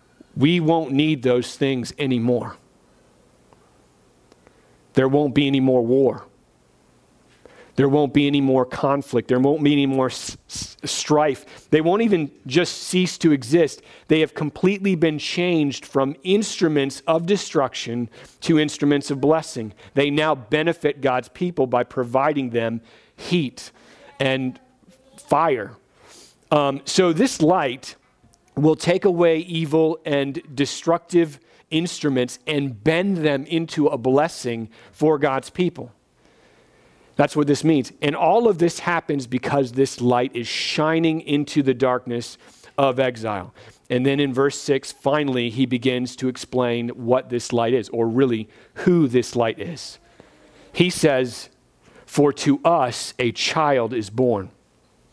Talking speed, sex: 135 wpm, male